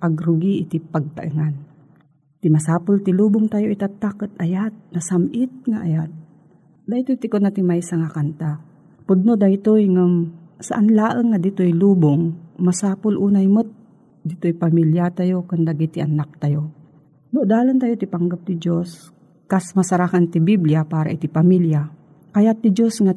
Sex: female